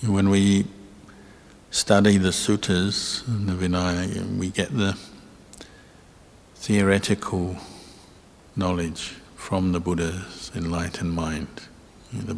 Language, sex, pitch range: English, male, 90-95 Hz